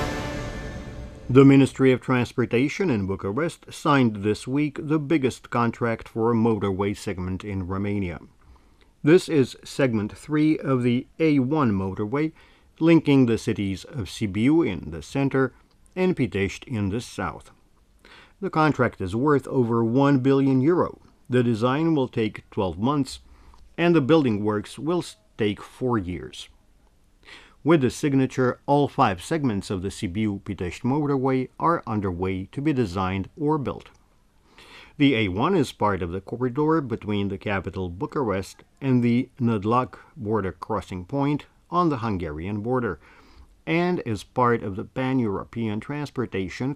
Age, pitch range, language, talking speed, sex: 50-69, 100-140 Hz, English, 135 wpm, male